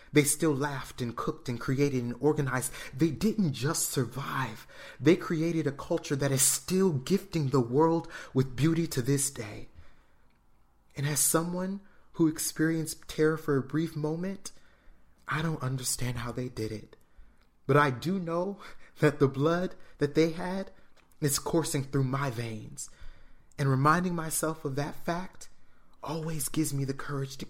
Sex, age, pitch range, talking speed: male, 30-49, 120-155 Hz, 155 wpm